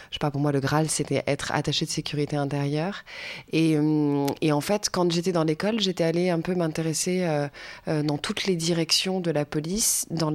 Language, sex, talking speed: French, female, 205 wpm